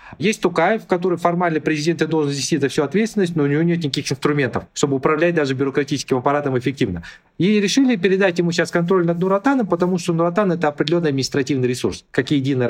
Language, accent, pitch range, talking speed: Russian, native, 130-170 Hz, 190 wpm